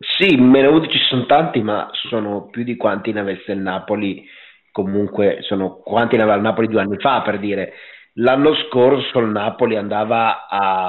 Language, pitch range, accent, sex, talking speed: Italian, 100-115 Hz, native, male, 180 wpm